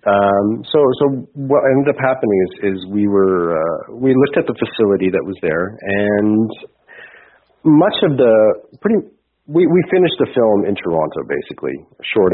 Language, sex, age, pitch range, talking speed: English, male, 40-59, 90-115 Hz, 165 wpm